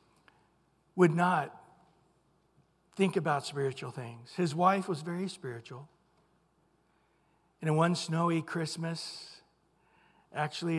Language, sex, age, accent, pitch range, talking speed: English, male, 60-79, American, 170-210 Hz, 95 wpm